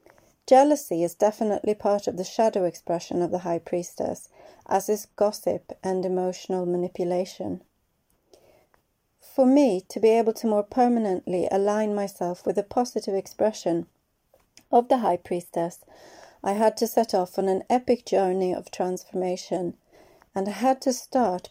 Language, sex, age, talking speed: English, female, 30-49, 145 wpm